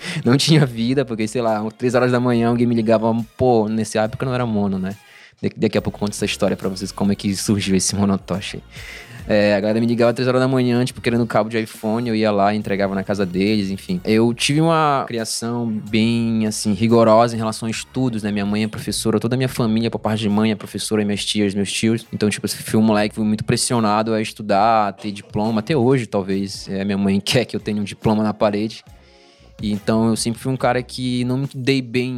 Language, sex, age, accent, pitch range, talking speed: Portuguese, male, 20-39, Brazilian, 105-115 Hz, 240 wpm